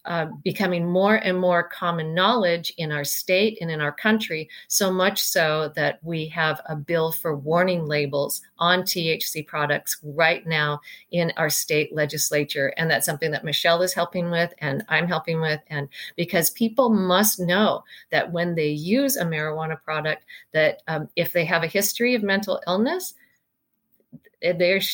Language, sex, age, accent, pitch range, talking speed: English, female, 40-59, American, 160-200 Hz, 165 wpm